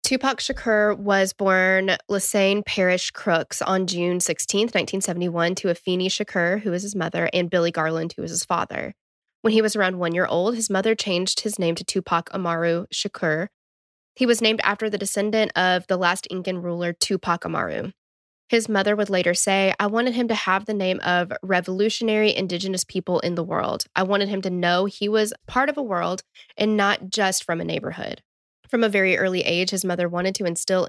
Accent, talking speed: American, 195 wpm